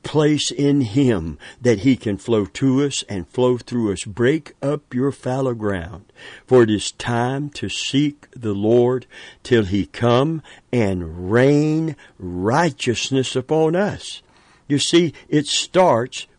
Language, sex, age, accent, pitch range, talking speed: English, male, 60-79, American, 105-140 Hz, 140 wpm